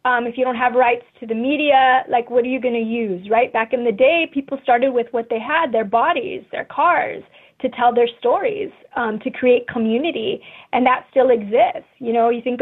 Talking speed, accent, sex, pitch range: 225 wpm, American, female, 235-270 Hz